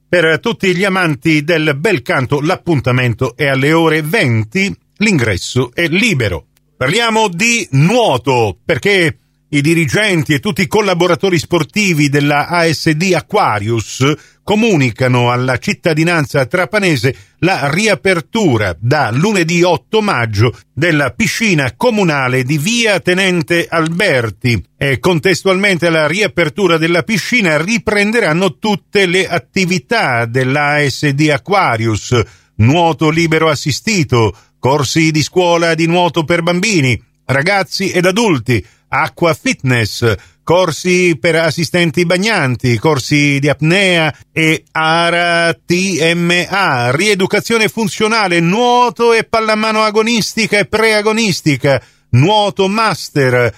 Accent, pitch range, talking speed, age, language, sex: native, 145-190 Hz, 105 wpm, 50-69, Italian, male